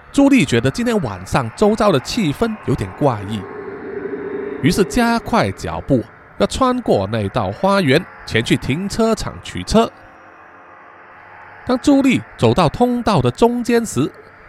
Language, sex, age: Chinese, male, 20-39